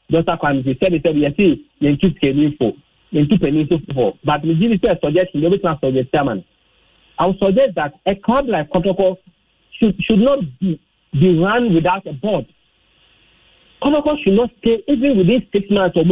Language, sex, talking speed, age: English, male, 180 wpm, 50-69